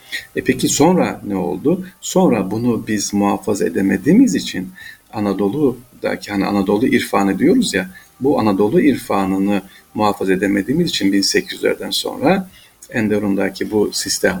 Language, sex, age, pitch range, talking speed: Turkish, male, 50-69, 100-125 Hz, 115 wpm